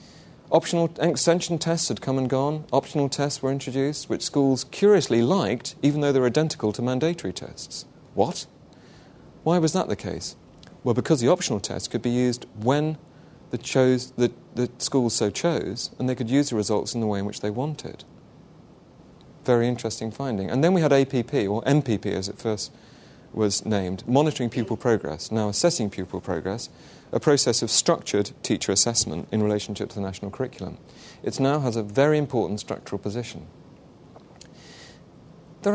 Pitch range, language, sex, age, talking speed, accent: 105-150 Hz, English, male, 30-49, 170 wpm, British